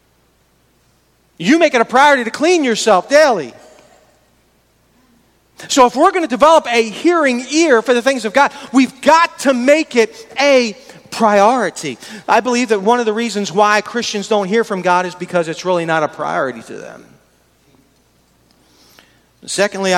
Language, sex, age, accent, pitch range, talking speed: English, male, 40-59, American, 155-230 Hz, 160 wpm